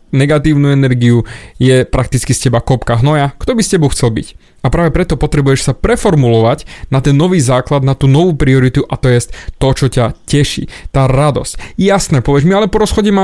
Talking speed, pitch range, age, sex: 200 wpm, 125-165 Hz, 20-39, male